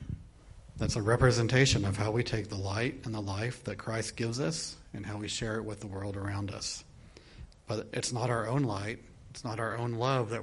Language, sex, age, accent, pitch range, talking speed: English, male, 40-59, American, 100-115 Hz, 220 wpm